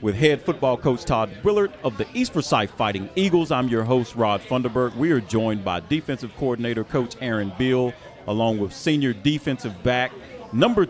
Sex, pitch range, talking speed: male, 120-160 Hz, 175 wpm